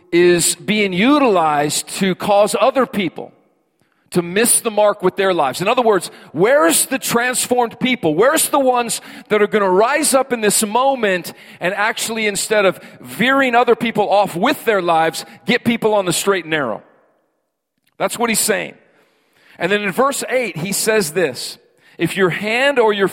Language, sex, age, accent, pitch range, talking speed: English, male, 40-59, American, 180-235 Hz, 175 wpm